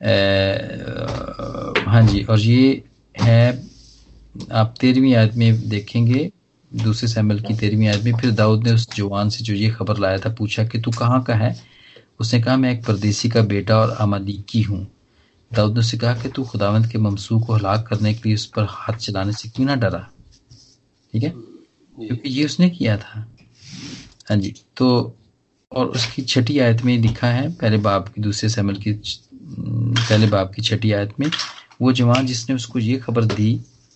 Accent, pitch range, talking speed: native, 105-120 Hz, 180 wpm